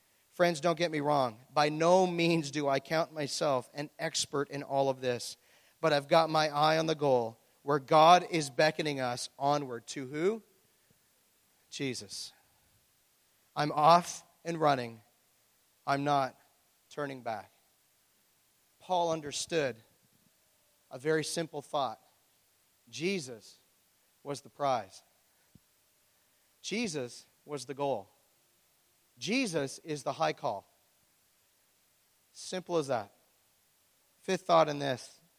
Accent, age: American, 40-59